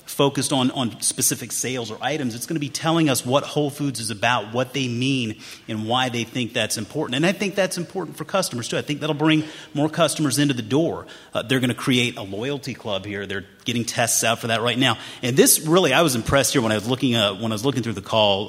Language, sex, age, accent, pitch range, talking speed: English, male, 30-49, American, 110-140 Hz, 245 wpm